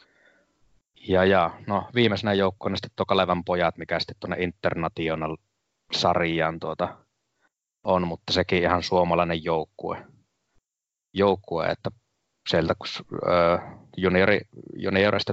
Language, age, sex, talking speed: Finnish, 20-39, male, 95 wpm